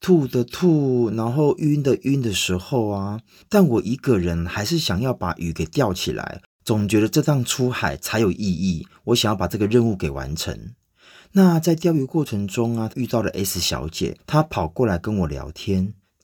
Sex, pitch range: male, 95-145 Hz